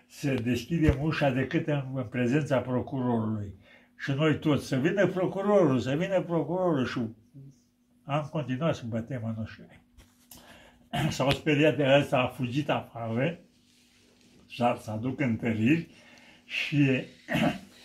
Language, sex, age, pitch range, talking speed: Romanian, male, 60-79, 115-155 Hz, 115 wpm